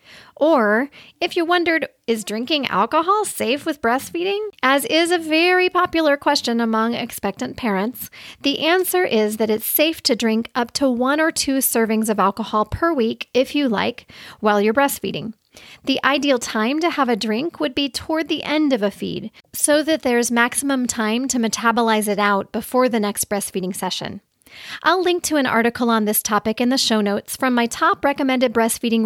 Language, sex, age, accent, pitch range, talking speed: English, female, 40-59, American, 220-290 Hz, 185 wpm